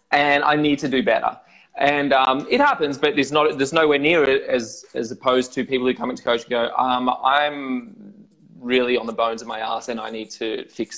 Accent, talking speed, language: Australian, 230 wpm, English